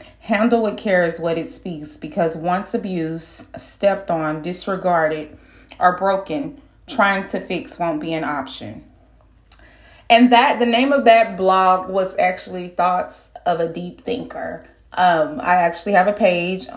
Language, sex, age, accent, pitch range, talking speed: English, female, 30-49, American, 165-215 Hz, 150 wpm